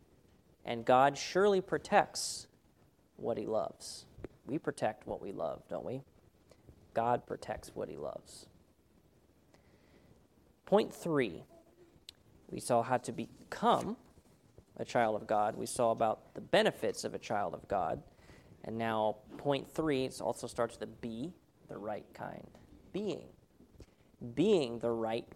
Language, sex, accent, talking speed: English, male, American, 130 wpm